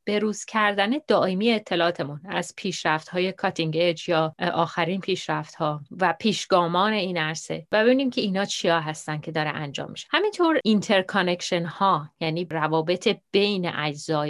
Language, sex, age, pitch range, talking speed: Persian, female, 30-49, 170-210 Hz, 135 wpm